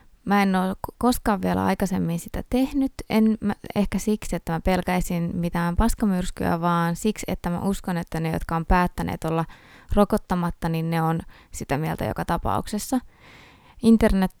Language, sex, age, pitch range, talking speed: Finnish, female, 20-39, 170-200 Hz, 155 wpm